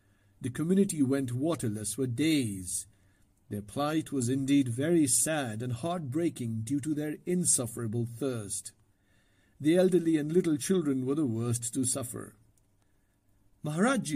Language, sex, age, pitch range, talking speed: English, male, 50-69, 110-165 Hz, 125 wpm